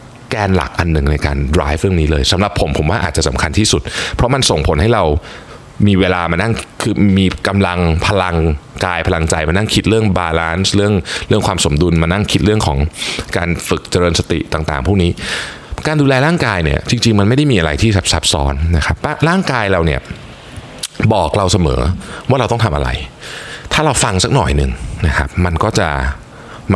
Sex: male